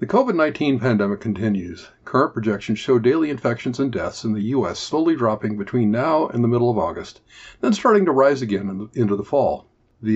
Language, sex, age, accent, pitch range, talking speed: English, male, 50-69, American, 105-135 Hz, 190 wpm